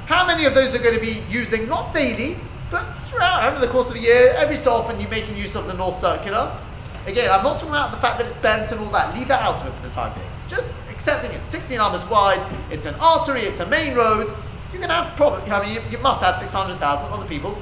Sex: male